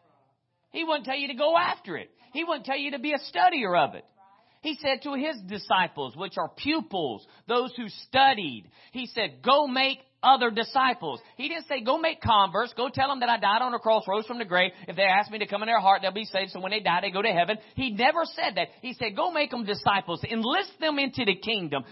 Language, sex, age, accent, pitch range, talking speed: English, male, 40-59, American, 190-265 Hz, 245 wpm